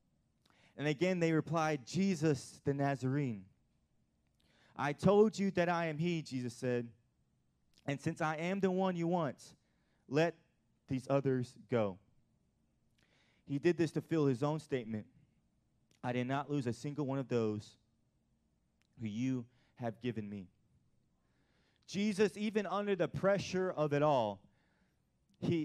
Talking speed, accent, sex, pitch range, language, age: 140 wpm, American, male, 140-190 Hz, English, 20-39